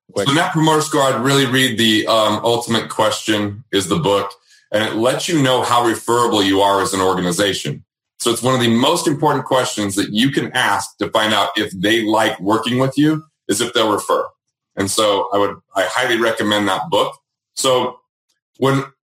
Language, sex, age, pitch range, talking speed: English, male, 30-49, 105-140 Hz, 195 wpm